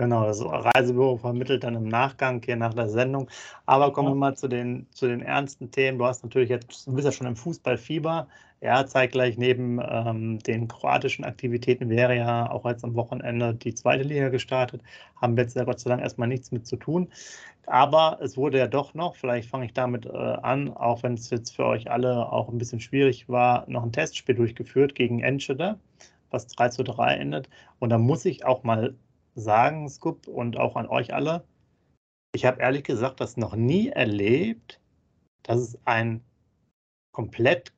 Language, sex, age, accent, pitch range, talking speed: German, male, 30-49, German, 120-135 Hz, 190 wpm